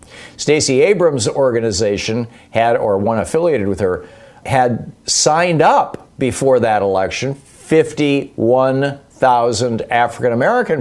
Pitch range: 105-140 Hz